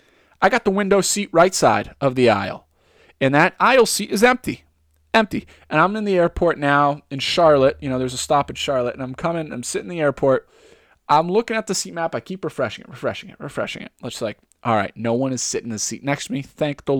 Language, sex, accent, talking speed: English, male, American, 245 wpm